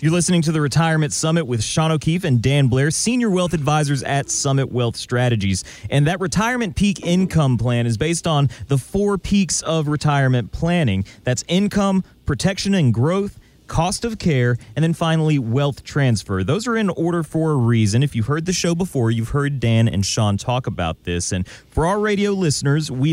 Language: English